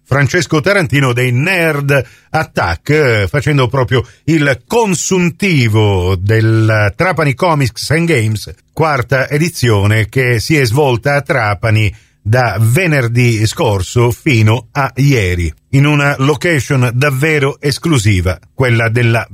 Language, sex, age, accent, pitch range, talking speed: Italian, male, 50-69, native, 125-175 Hz, 110 wpm